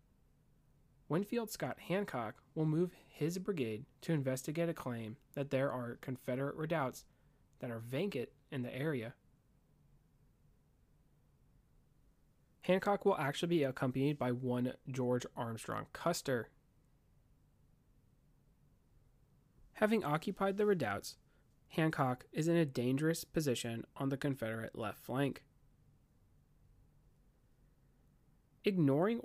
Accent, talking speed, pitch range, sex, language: American, 100 wpm, 125-155 Hz, male, English